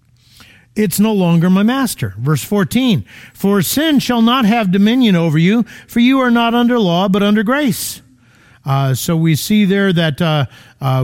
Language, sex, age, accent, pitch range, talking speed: English, male, 50-69, American, 145-195 Hz, 175 wpm